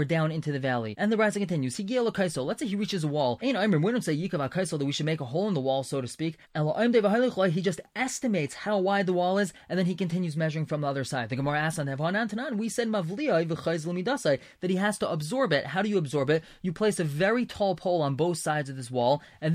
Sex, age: male, 20-39